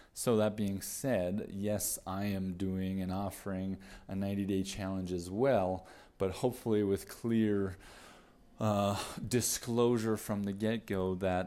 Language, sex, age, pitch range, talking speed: English, male, 20-39, 95-110 Hz, 140 wpm